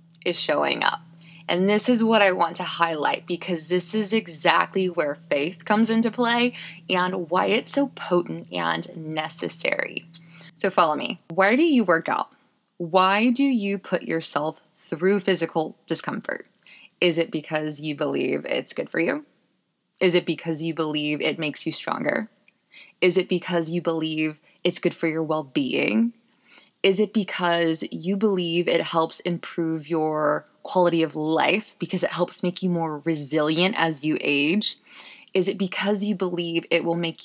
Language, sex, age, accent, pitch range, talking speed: English, female, 20-39, American, 165-210 Hz, 165 wpm